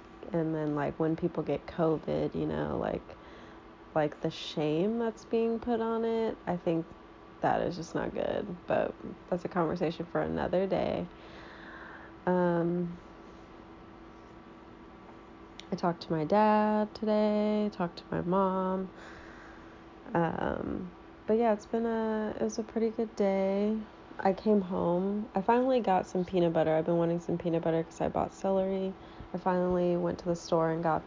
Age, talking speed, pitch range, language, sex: 20-39, 160 wpm, 160-190 Hz, English, female